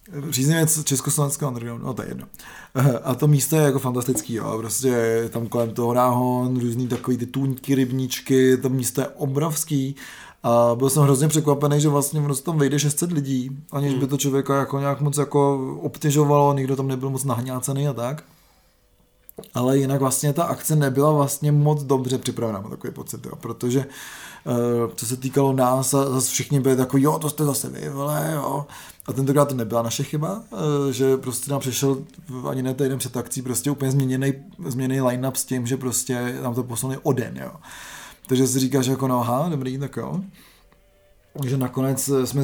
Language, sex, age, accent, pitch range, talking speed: Czech, male, 20-39, native, 125-140 Hz, 180 wpm